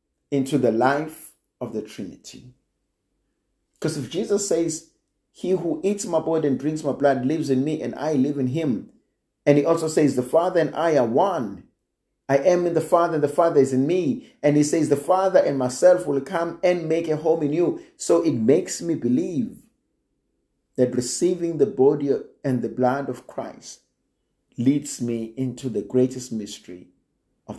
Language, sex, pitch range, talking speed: English, male, 110-150 Hz, 185 wpm